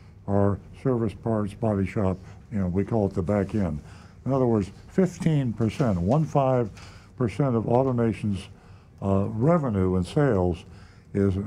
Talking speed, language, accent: 145 wpm, English, American